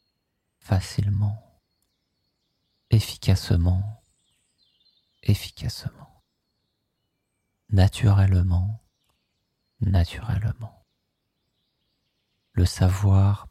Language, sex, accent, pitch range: French, male, French, 85-105 Hz